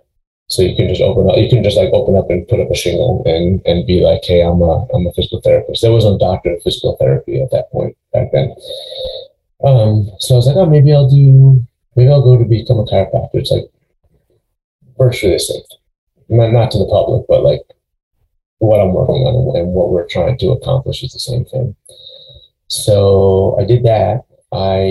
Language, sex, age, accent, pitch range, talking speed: English, male, 30-49, American, 95-125 Hz, 205 wpm